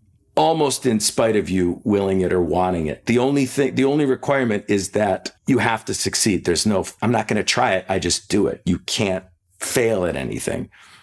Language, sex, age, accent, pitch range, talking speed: English, male, 50-69, American, 105-135 Hz, 210 wpm